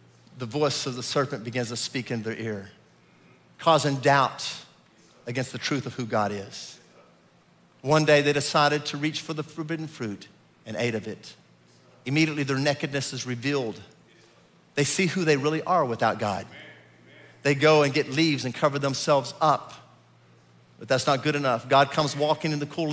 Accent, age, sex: American, 50-69, male